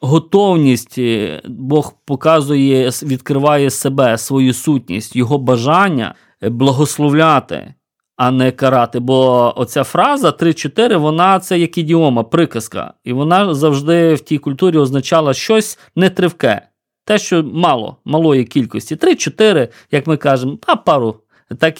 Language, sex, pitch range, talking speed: Ukrainian, male, 125-175 Hz, 120 wpm